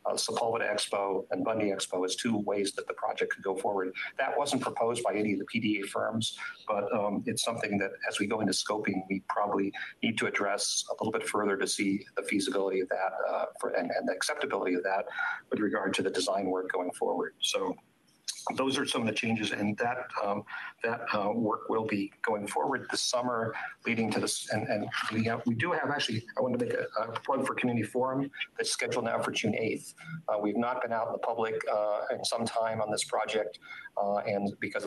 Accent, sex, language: American, male, English